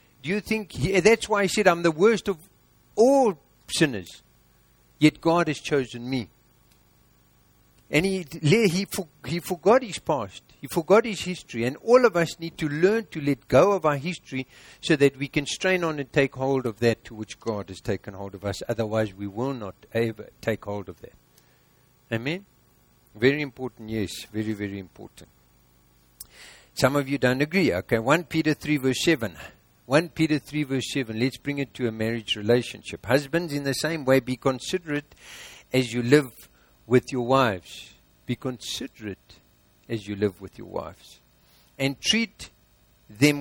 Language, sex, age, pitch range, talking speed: English, male, 60-79, 100-155 Hz, 175 wpm